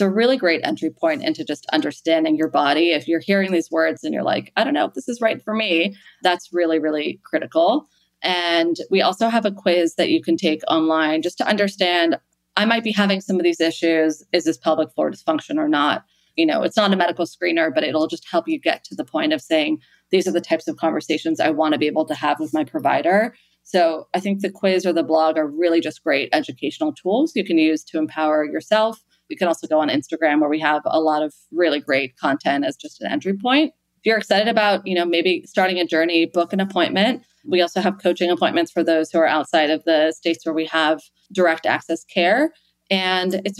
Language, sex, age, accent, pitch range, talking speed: English, female, 30-49, American, 160-230 Hz, 230 wpm